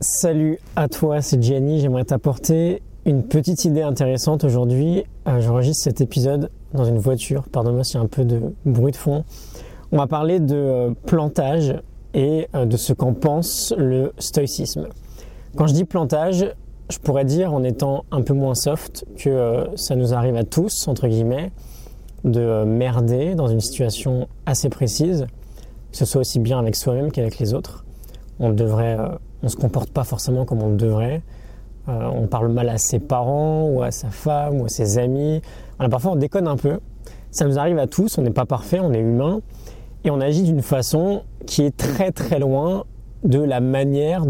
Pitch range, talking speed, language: 120-150 Hz, 195 wpm, French